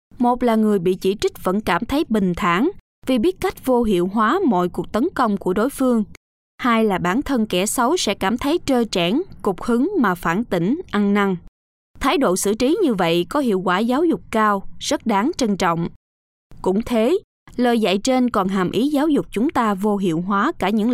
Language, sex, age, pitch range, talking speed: Vietnamese, female, 20-39, 185-255 Hz, 215 wpm